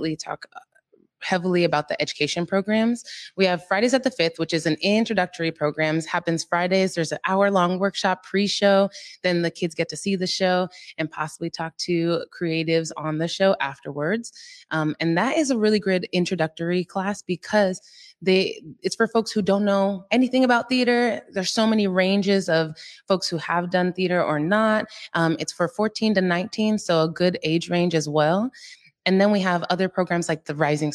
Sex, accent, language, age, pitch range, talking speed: female, American, English, 20-39, 165-205 Hz, 185 wpm